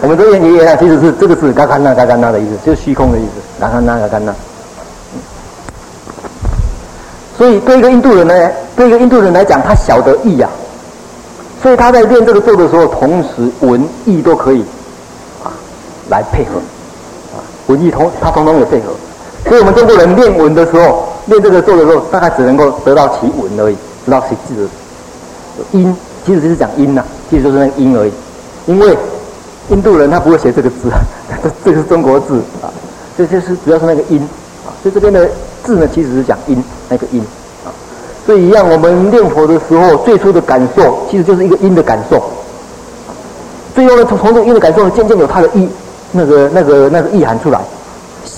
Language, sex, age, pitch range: Chinese, male, 50-69, 130-195 Hz